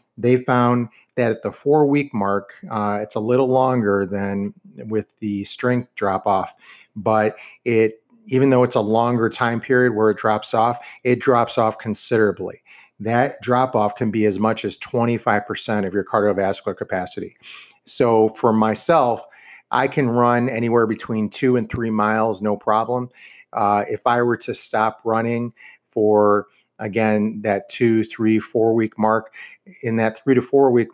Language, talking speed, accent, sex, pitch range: English, 155 wpm, American, male, 105-120 Hz